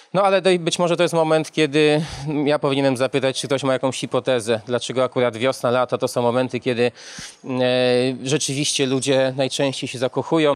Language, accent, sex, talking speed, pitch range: Polish, native, male, 165 wpm, 125-145 Hz